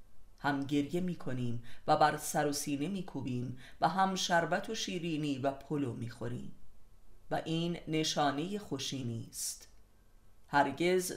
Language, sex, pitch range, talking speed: Persian, female, 125-175 Hz, 140 wpm